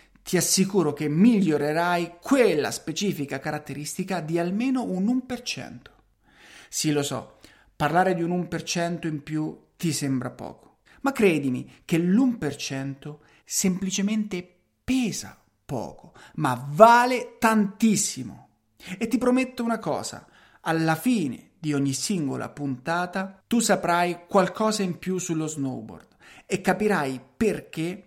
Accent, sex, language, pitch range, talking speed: native, male, Italian, 150-205 Hz, 115 wpm